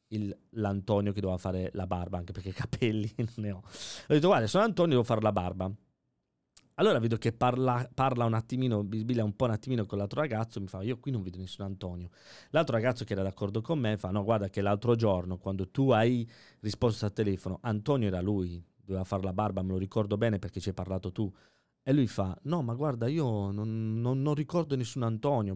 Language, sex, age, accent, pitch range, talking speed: Italian, male, 30-49, native, 100-130 Hz, 220 wpm